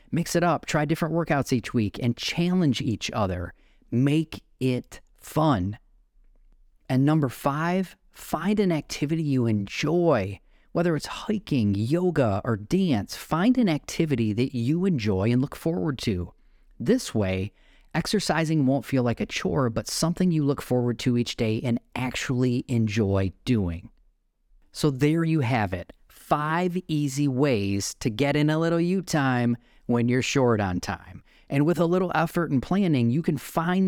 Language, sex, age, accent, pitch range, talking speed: English, male, 30-49, American, 110-160 Hz, 160 wpm